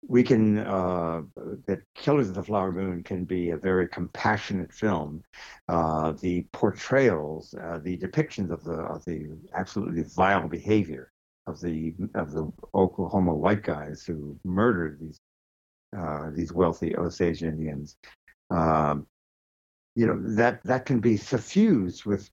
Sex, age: male, 60-79